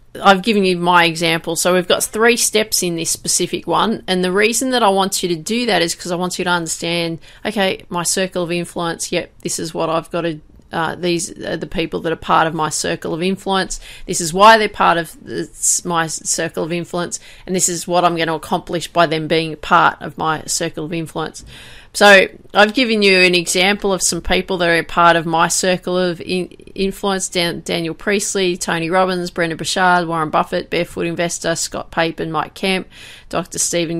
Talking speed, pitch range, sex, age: 205 wpm, 170-195 Hz, female, 30-49